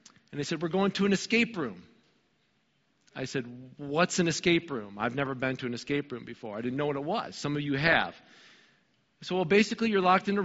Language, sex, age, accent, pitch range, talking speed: English, male, 40-59, American, 130-180 Hz, 230 wpm